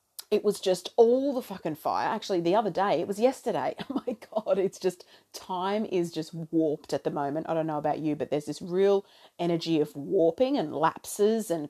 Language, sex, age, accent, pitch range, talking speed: English, female, 40-59, Australian, 165-225 Hz, 210 wpm